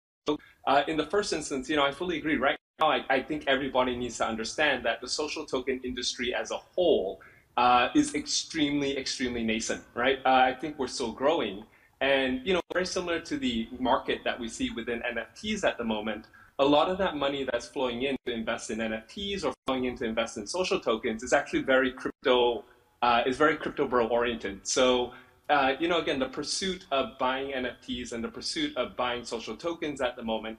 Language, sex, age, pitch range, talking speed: English, male, 20-39, 120-145 Hz, 205 wpm